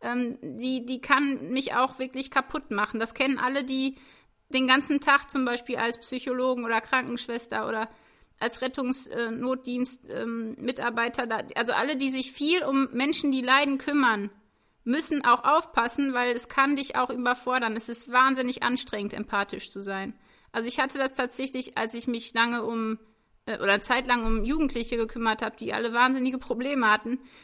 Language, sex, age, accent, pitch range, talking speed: German, female, 30-49, German, 240-270 Hz, 155 wpm